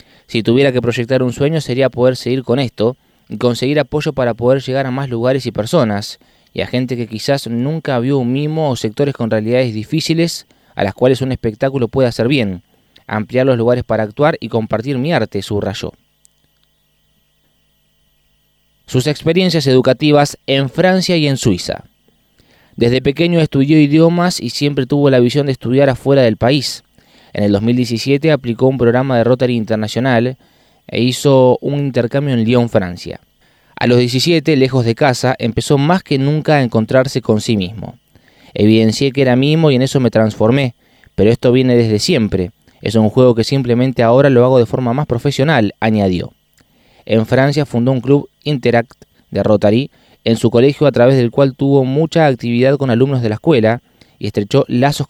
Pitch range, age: 115-140 Hz, 20-39